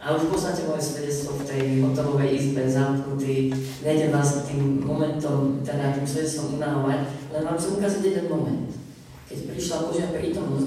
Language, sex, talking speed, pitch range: Slovak, female, 165 wpm, 130-155 Hz